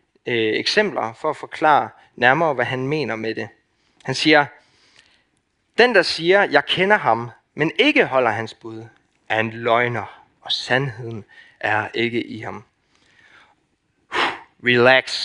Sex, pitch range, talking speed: male, 115-160 Hz, 130 wpm